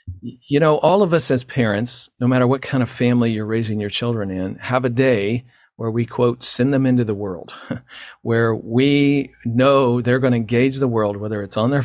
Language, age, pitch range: English, 50-69, 105-130 Hz